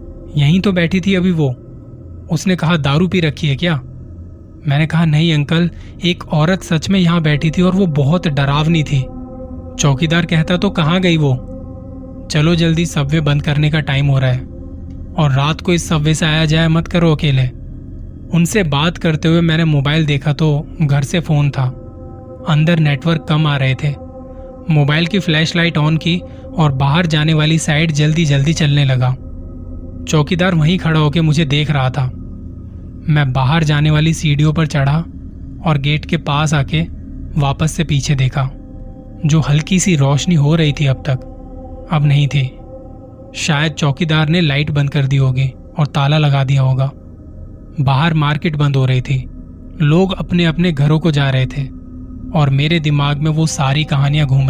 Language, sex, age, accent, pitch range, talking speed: Hindi, male, 20-39, native, 130-160 Hz, 175 wpm